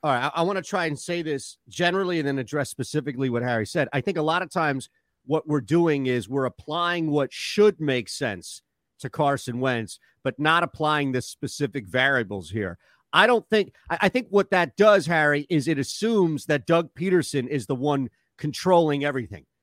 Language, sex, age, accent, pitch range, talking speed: English, male, 40-59, American, 140-180 Hz, 195 wpm